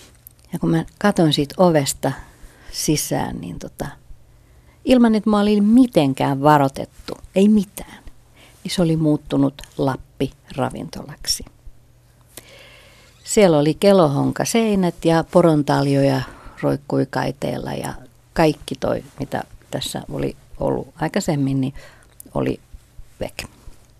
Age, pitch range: 50-69, 135-170 Hz